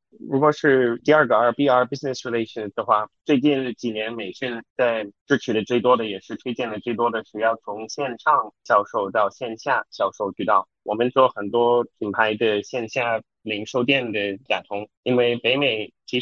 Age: 10-29